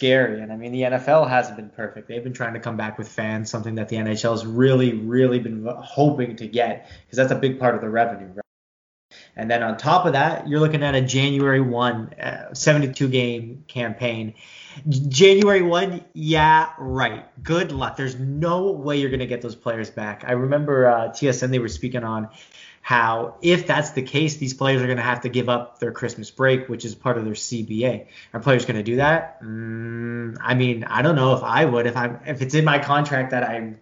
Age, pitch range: 20-39, 115-145 Hz